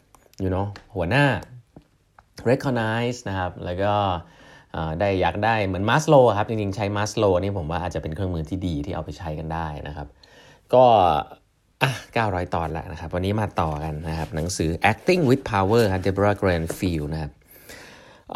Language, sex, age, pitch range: Thai, male, 20-39, 85-115 Hz